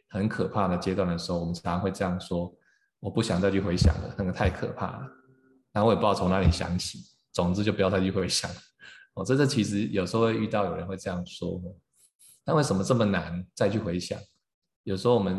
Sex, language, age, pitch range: male, Chinese, 20-39, 90-105 Hz